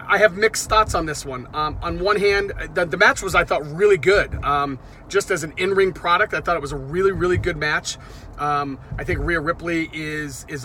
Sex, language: male, English